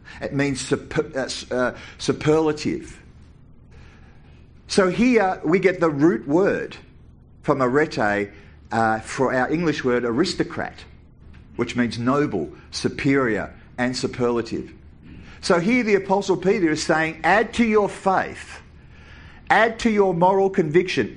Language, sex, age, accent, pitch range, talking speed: English, male, 50-69, Australian, 110-175 Hz, 115 wpm